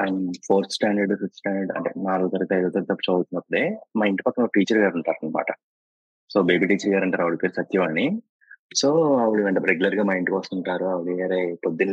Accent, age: native, 20-39